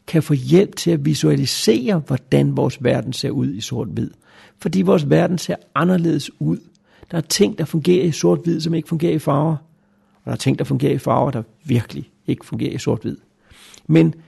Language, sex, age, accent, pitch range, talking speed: Danish, male, 60-79, native, 140-170 Hz, 195 wpm